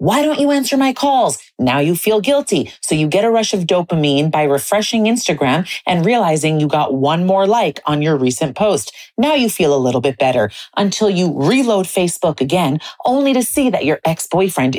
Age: 30-49